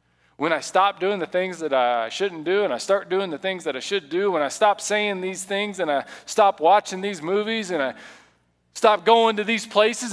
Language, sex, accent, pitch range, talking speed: English, male, American, 155-225 Hz, 230 wpm